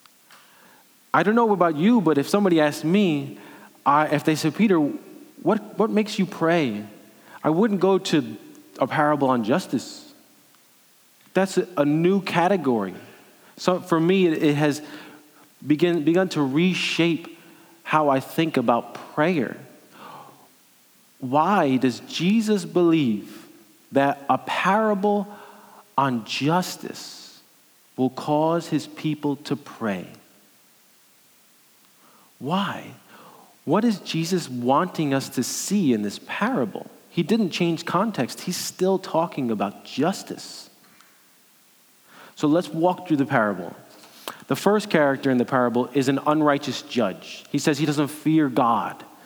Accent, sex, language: American, male, English